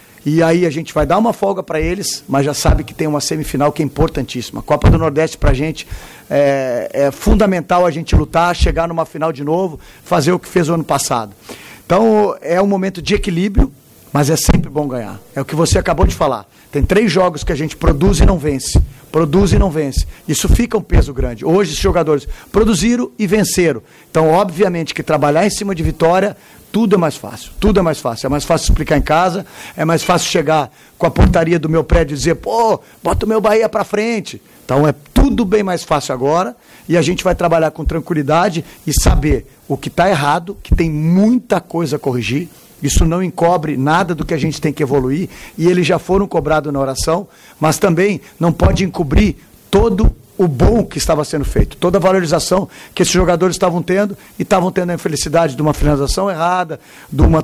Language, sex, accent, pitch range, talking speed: Portuguese, male, Brazilian, 150-185 Hz, 215 wpm